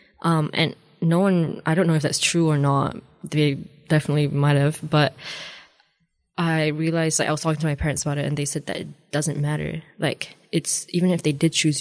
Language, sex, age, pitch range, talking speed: Arabic, female, 10-29, 145-160 Hz, 210 wpm